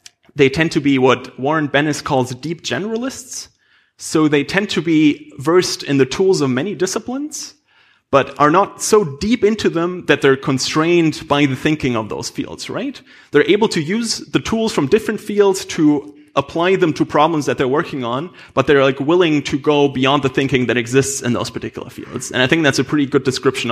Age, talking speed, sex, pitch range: 30-49, 200 wpm, male, 130-165 Hz